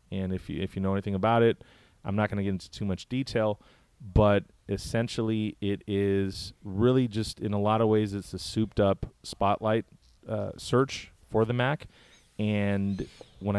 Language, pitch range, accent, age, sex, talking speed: English, 95-110 Hz, American, 30-49, male, 180 wpm